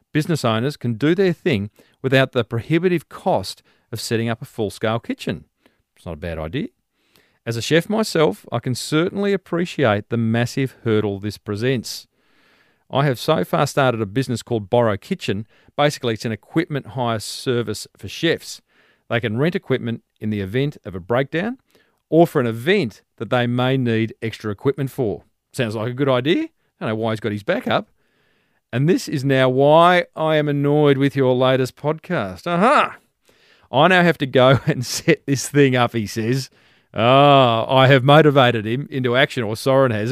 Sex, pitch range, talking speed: male, 115-150 Hz, 185 wpm